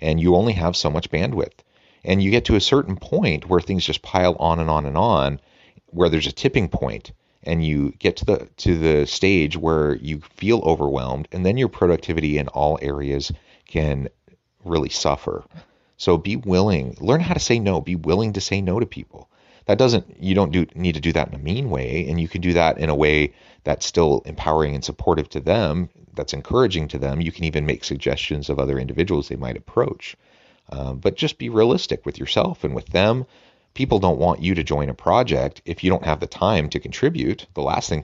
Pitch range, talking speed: 70-90 Hz, 215 wpm